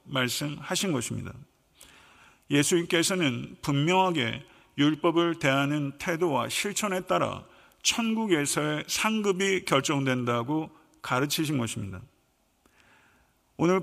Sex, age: male, 50-69